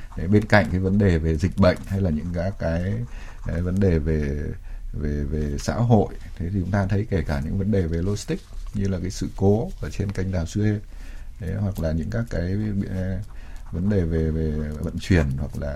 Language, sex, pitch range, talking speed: Vietnamese, male, 85-105 Hz, 220 wpm